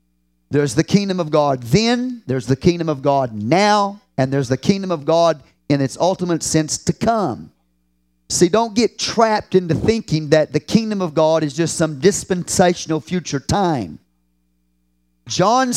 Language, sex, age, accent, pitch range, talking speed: English, male, 40-59, American, 130-195 Hz, 160 wpm